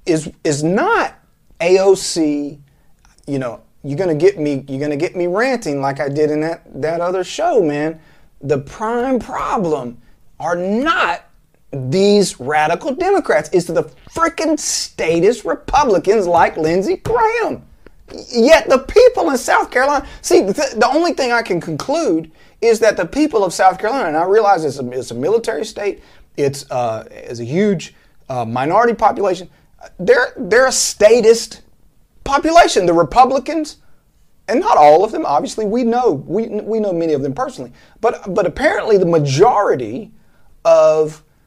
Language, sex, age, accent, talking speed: English, male, 30-49, American, 150 wpm